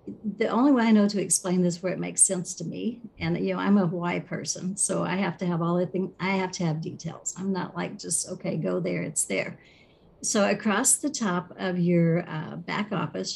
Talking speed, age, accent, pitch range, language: 235 wpm, 50-69, American, 180-210 Hz, English